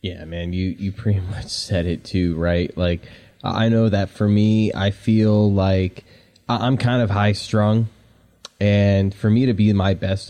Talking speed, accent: 180 wpm, American